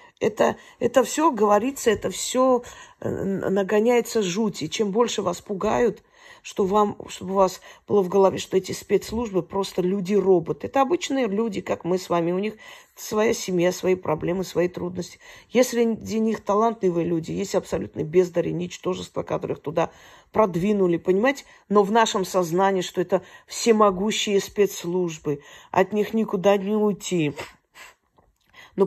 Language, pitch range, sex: Russian, 180-230 Hz, female